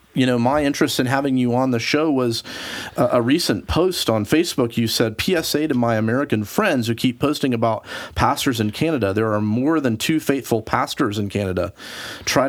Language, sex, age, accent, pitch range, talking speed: English, male, 40-59, American, 105-130 Hz, 195 wpm